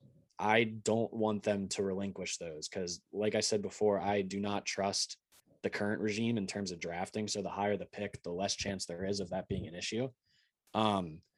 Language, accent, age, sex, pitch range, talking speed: English, American, 20-39, male, 95-105 Hz, 205 wpm